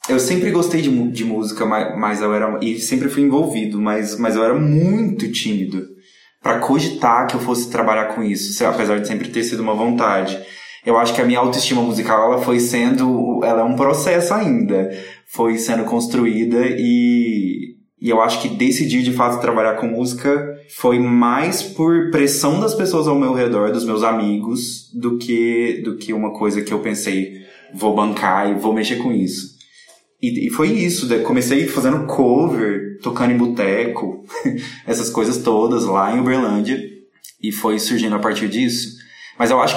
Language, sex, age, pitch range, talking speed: Portuguese, male, 20-39, 110-140 Hz, 180 wpm